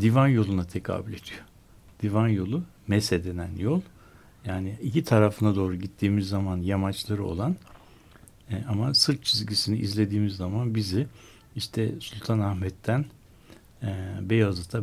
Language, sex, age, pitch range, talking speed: Turkish, male, 60-79, 95-115 Hz, 105 wpm